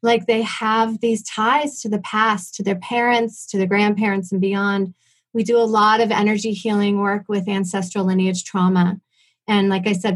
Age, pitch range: 30-49, 190-235 Hz